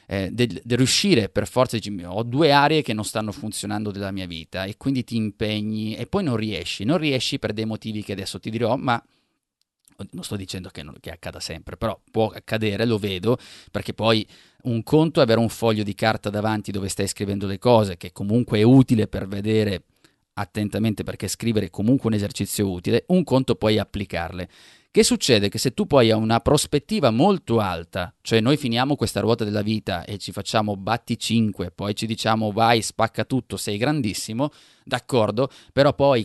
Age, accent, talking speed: 30-49, native, 190 wpm